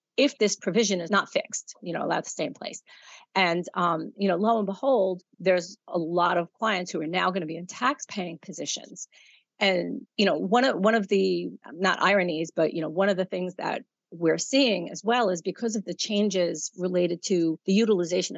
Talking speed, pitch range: 210 wpm, 170-210 Hz